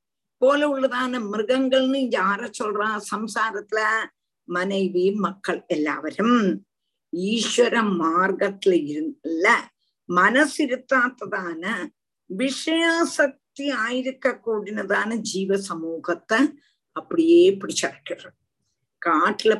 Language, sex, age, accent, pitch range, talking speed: Tamil, female, 50-69, native, 195-285 Hz, 60 wpm